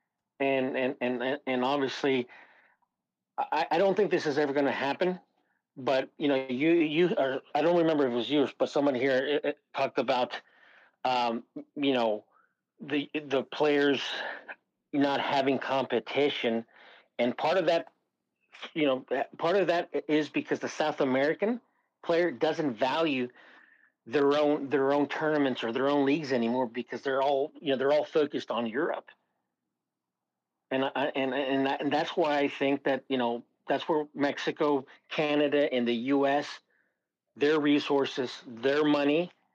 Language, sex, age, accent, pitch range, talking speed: English, male, 40-59, American, 135-155 Hz, 150 wpm